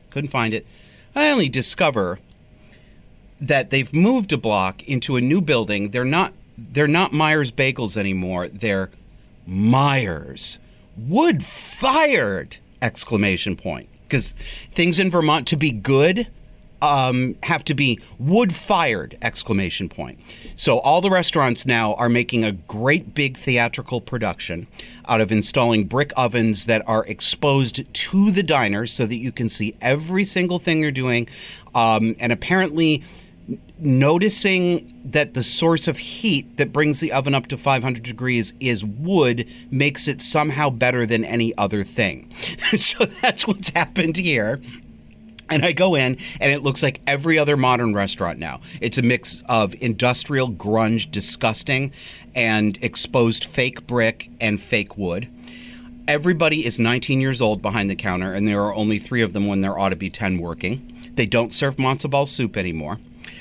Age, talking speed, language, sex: 40-59, 155 wpm, English, male